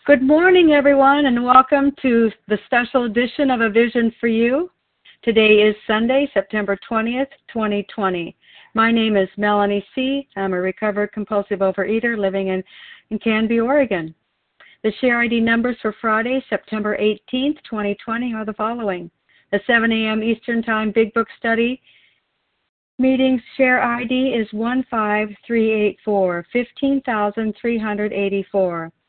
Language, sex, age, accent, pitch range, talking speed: English, female, 50-69, American, 200-240 Hz, 125 wpm